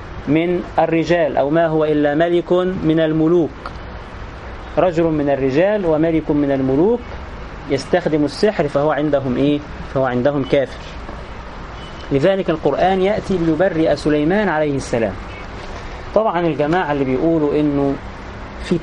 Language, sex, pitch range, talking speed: English, male, 135-160 Hz, 115 wpm